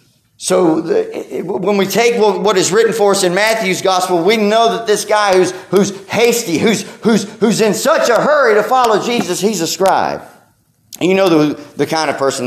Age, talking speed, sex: 40-59, 200 wpm, male